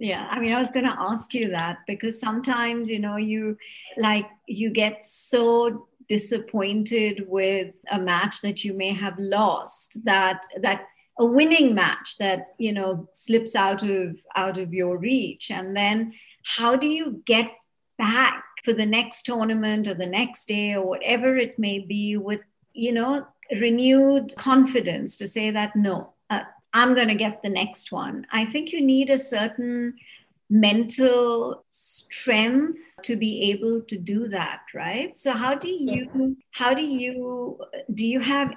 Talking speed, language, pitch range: 160 wpm, English, 210-250 Hz